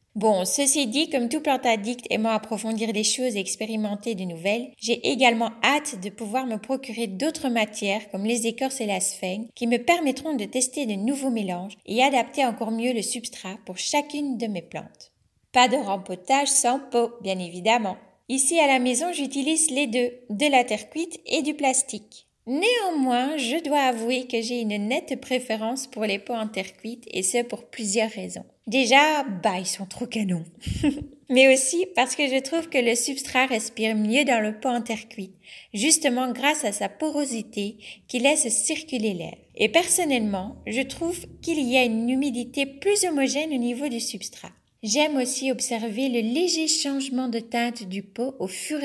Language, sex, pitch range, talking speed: French, female, 215-275 Hz, 185 wpm